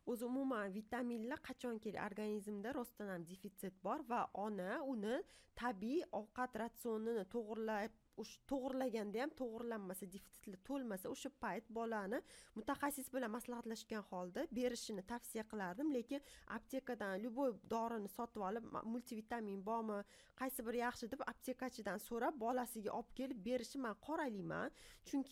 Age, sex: 20-39, female